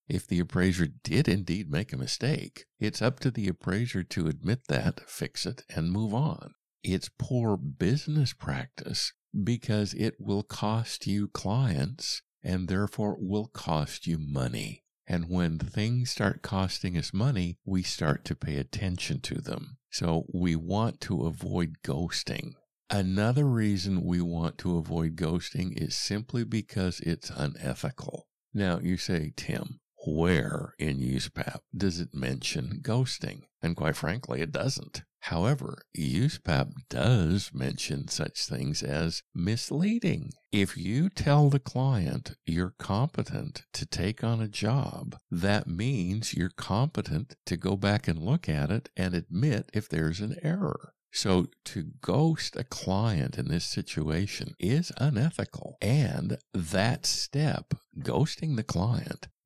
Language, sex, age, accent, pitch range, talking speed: English, male, 50-69, American, 90-125 Hz, 140 wpm